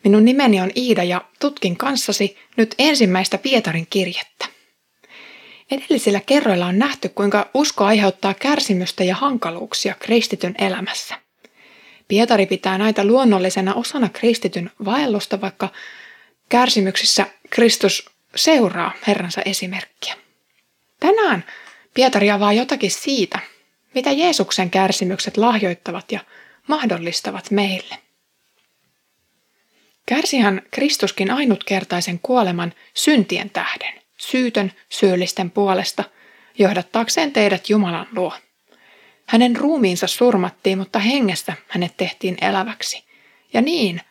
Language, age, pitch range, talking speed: Finnish, 20-39, 190-250 Hz, 100 wpm